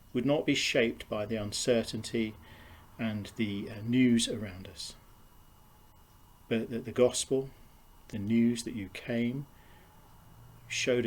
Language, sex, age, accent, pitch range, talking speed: English, male, 40-59, British, 95-120 Hz, 120 wpm